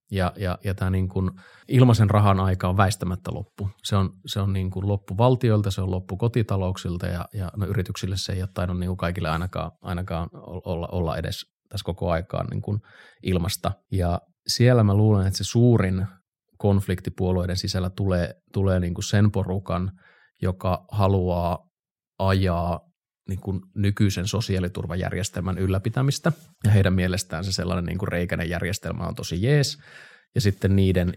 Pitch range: 90-105 Hz